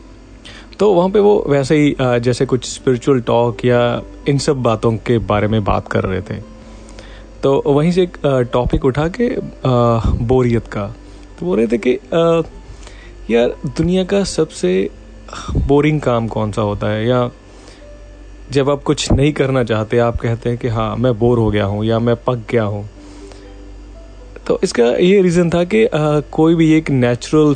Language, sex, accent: English, male, Indian